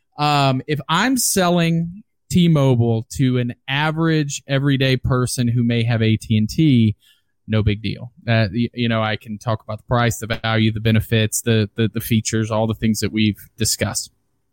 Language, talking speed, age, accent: English, 185 wpm, 20-39, American